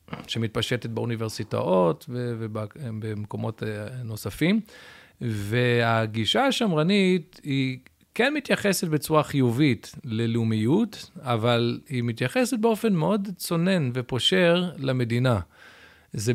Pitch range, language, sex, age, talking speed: 115-150 Hz, Hebrew, male, 40-59, 75 wpm